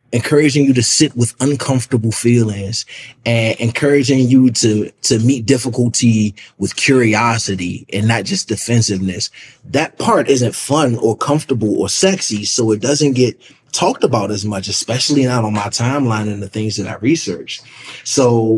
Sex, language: male, English